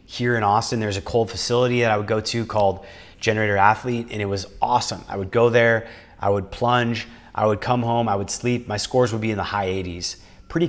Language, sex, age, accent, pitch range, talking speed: English, male, 30-49, American, 100-120 Hz, 235 wpm